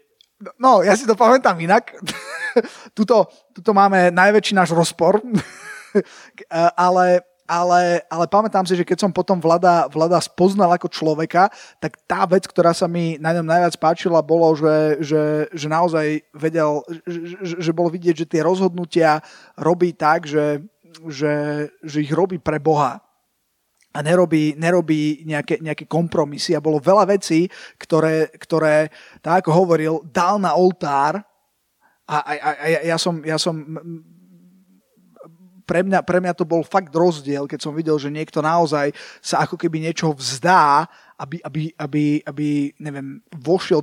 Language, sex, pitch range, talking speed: Slovak, male, 155-180 Hz, 155 wpm